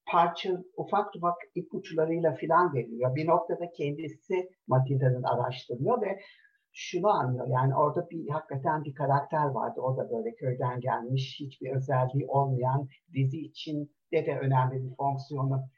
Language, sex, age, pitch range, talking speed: Turkish, male, 60-79, 140-180 Hz, 135 wpm